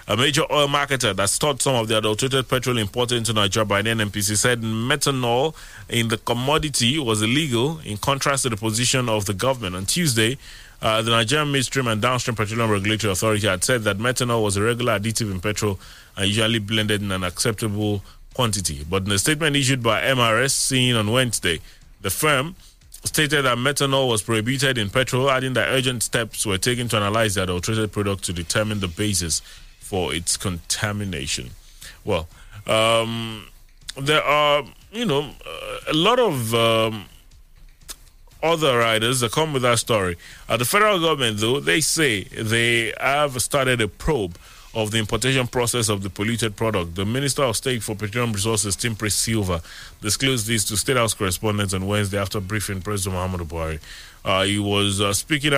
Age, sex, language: 30-49, male, English